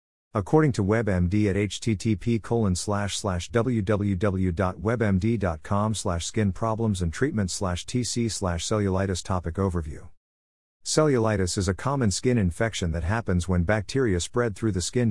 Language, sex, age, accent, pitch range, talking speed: English, male, 50-69, American, 90-115 Hz, 135 wpm